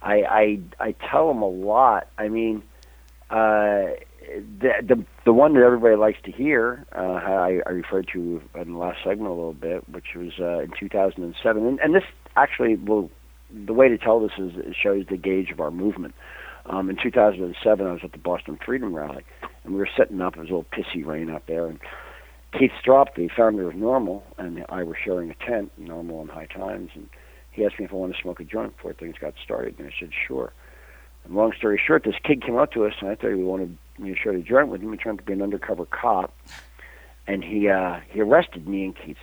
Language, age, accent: English, 50-69, American